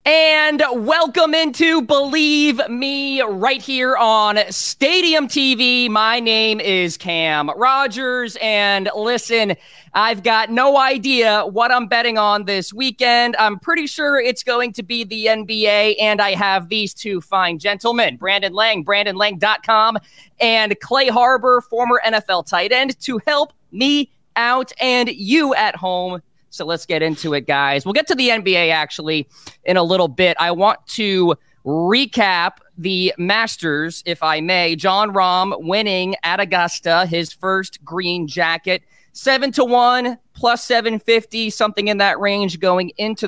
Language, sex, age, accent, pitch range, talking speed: English, male, 20-39, American, 185-250 Hz, 150 wpm